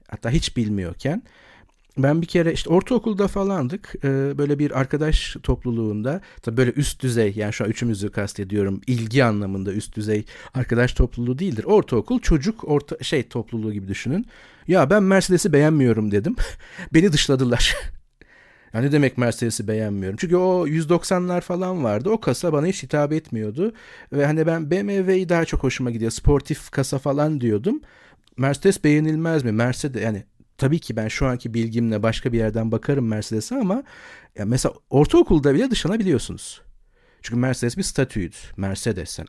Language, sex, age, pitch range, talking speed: Turkish, male, 50-69, 115-180 Hz, 150 wpm